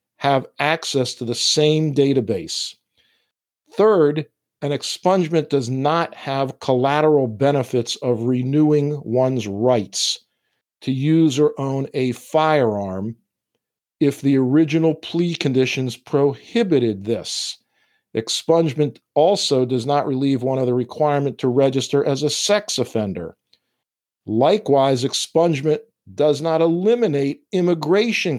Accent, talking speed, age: American, 110 wpm, 50-69